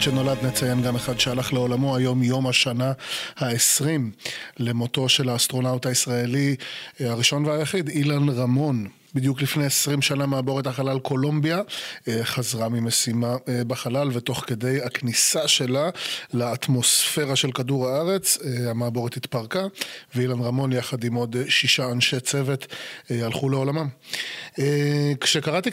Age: 30-49